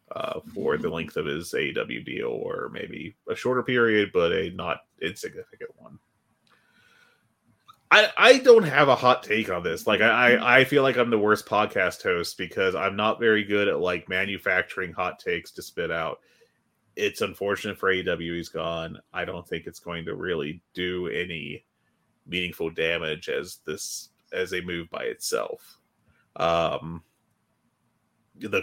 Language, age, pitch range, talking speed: English, 30-49, 90-145 Hz, 155 wpm